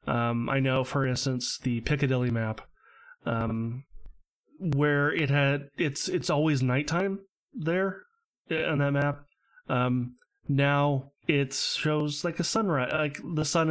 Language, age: English, 20-39